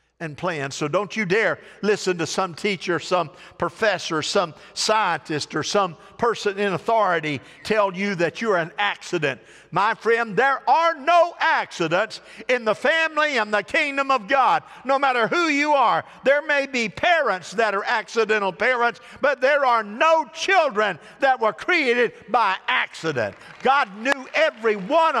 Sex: male